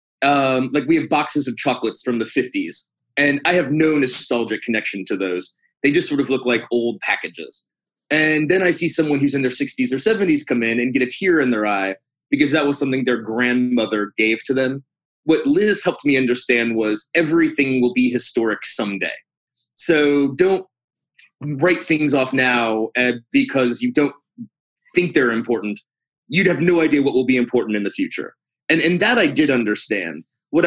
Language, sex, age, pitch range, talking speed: English, male, 30-49, 125-175 Hz, 190 wpm